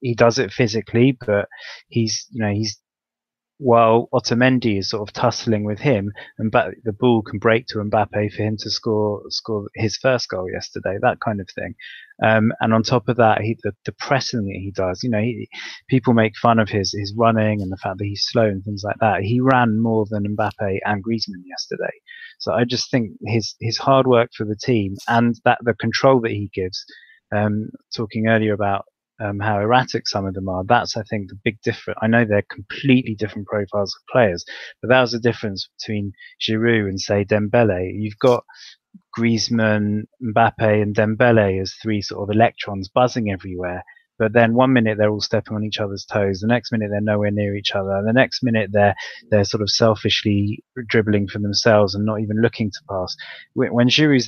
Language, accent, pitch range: English, British, 105-120 Hz